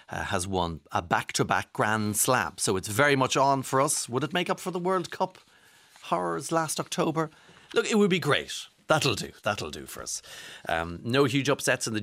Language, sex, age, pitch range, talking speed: English, male, 40-59, 100-140 Hz, 205 wpm